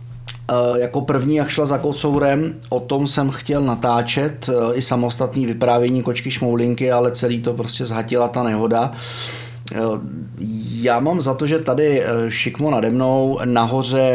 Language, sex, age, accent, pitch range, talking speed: Czech, male, 30-49, native, 115-130 Hz, 140 wpm